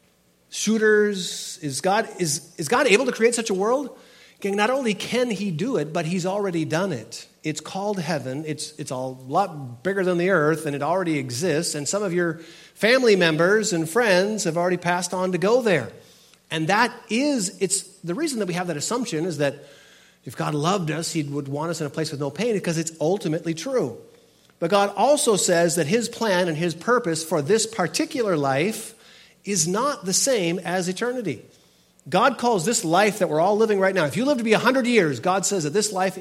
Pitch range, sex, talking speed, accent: 155-220 Hz, male, 210 wpm, American